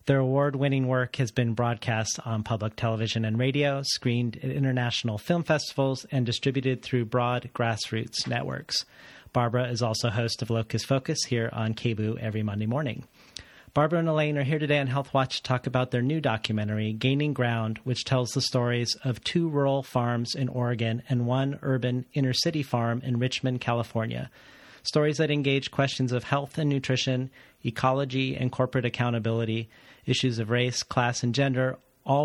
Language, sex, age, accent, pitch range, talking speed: English, male, 40-59, American, 120-135 Hz, 165 wpm